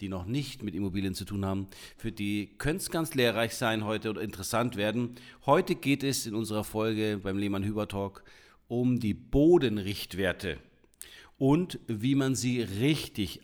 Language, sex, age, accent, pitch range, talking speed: German, male, 40-59, German, 105-140 Hz, 165 wpm